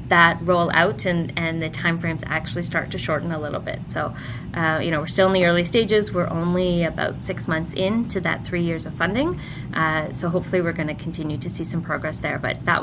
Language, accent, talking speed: English, American, 235 wpm